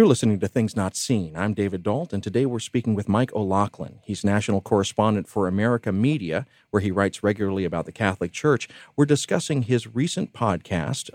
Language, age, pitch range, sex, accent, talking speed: English, 40-59, 100-120 Hz, male, American, 190 wpm